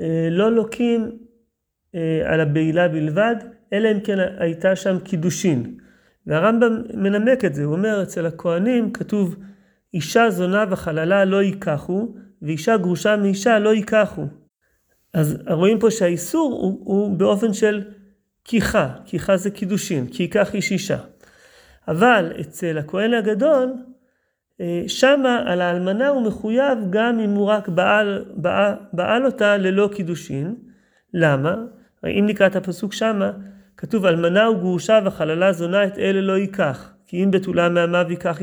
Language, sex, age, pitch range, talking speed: Hebrew, male, 40-59, 175-225 Hz, 130 wpm